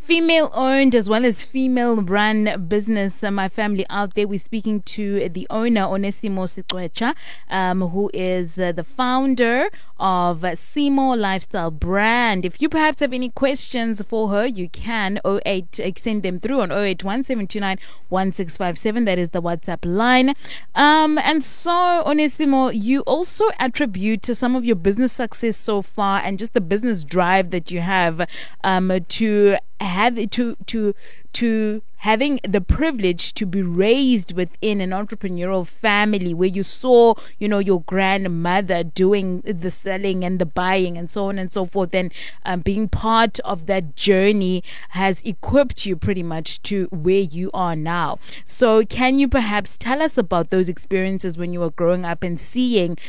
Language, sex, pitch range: English, female, 185-235 Hz